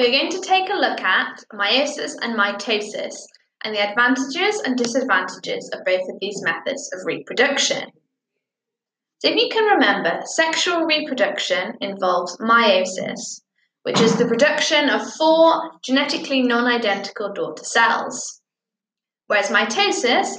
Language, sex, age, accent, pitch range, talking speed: English, female, 10-29, British, 210-285 Hz, 125 wpm